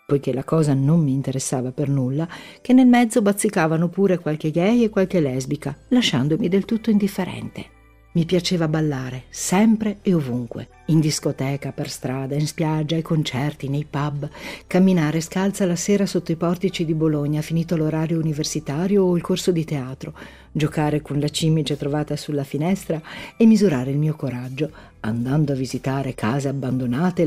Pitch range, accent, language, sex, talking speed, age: 140-175 Hz, native, Italian, female, 160 wpm, 50-69